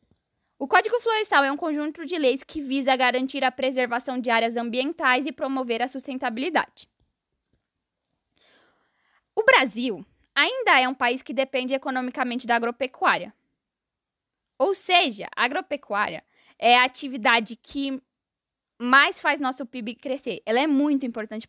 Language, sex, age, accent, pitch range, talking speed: Portuguese, female, 10-29, Brazilian, 230-275 Hz, 135 wpm